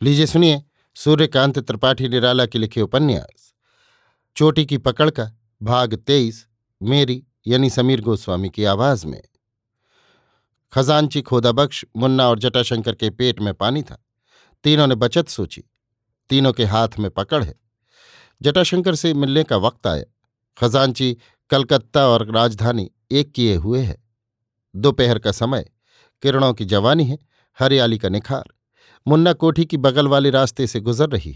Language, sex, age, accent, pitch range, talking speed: Hindi, male, 50-69, native, 115-140 Hz, 140 wpm